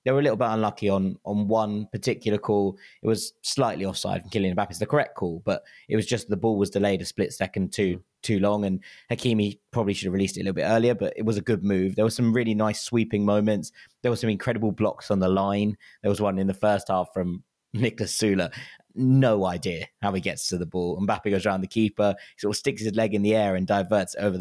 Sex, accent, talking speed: male, British, 255 wpm